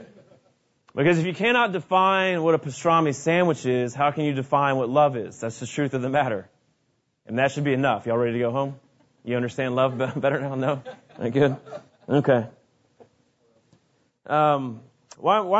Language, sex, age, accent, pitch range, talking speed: English, male, 30-49, American, 135-170 Hz, 165 wpm